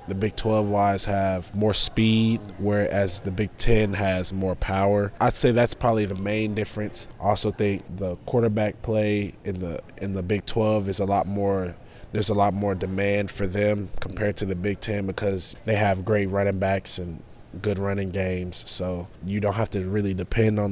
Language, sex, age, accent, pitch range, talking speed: English, male, 20-39, American, 95-110 Hz, 195 wpm